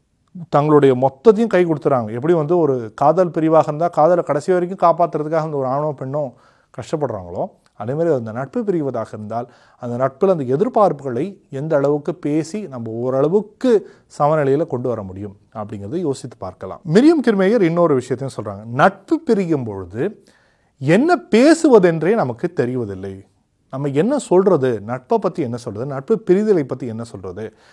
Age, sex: 30-49, male